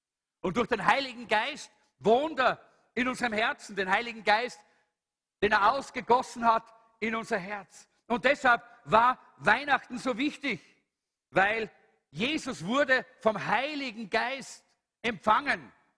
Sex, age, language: male, 50-69, English